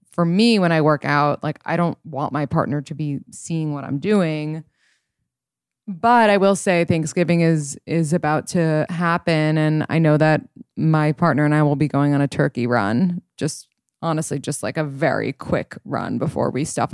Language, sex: English, female